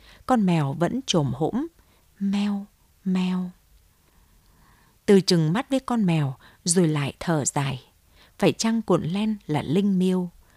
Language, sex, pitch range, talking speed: Vietnamese, female, 150-205 Hz, 135 wpm